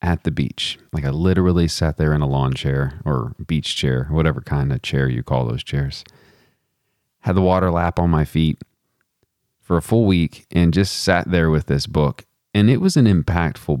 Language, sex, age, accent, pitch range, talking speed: English, male, 30-49, American, 75-95 Hz, 200 wpm